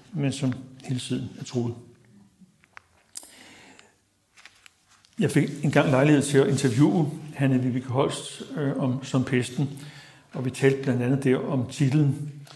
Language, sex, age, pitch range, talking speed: Danish, male, 60-79, 125-140 Hz, 125 wpm